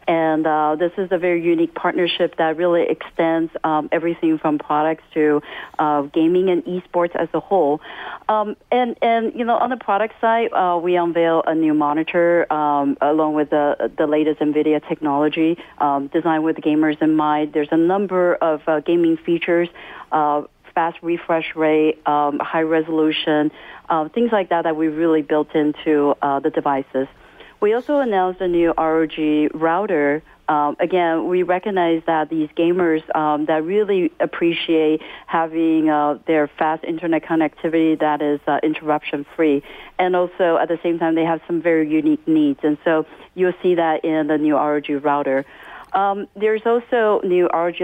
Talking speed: 170 wpm